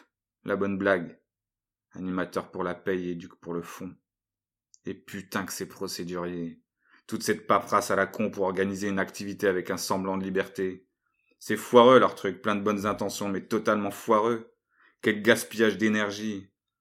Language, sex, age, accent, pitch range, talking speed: French, male, 30-49, French, 95-105 Hz, 165 wpm